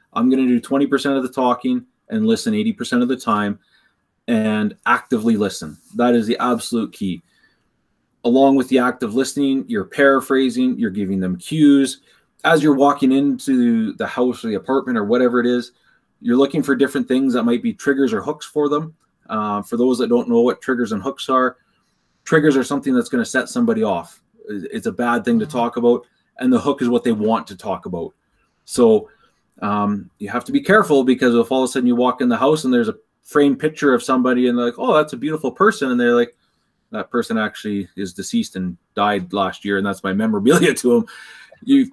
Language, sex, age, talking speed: English, male, 30-49, 215 wpm